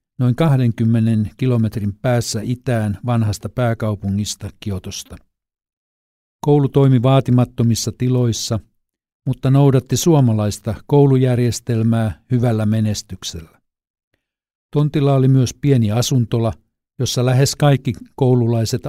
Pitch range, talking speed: 110-130 Hz, 85 wpm